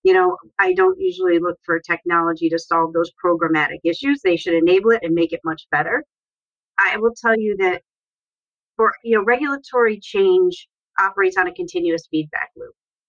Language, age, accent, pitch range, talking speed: English, 40-59, American, 170-235 Hz, 175 wpm